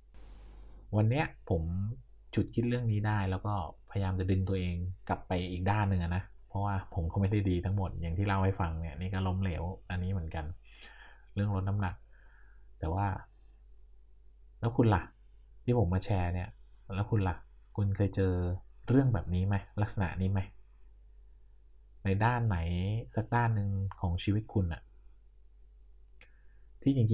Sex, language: male, Thai